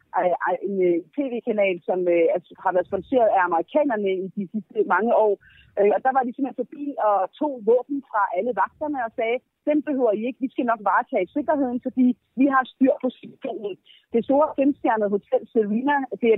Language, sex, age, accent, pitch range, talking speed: Danish, female, 30-49, native, 215-280 Hz, 190 wpm